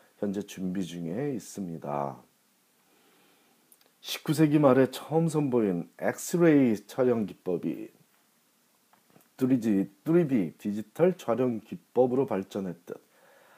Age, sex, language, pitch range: 40-59, male, Korean, 95-130 Hz